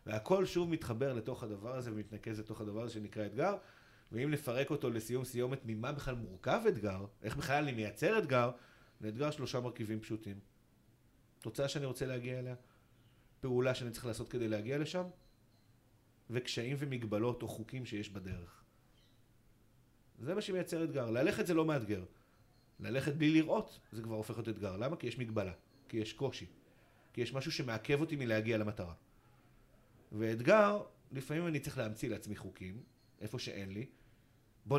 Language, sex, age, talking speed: Hebrew, male, 30-49, 150 wpm